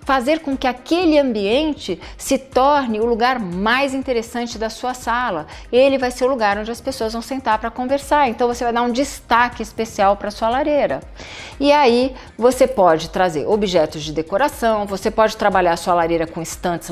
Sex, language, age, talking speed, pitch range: female, Portuguese, 40-59, 190 wpm, 185-245 Hz